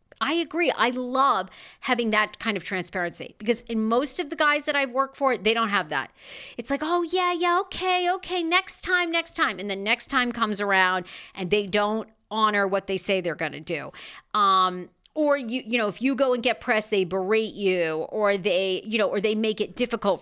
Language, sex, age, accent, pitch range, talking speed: English, female, 40-59, American, 190-255 Hz, 220 wpm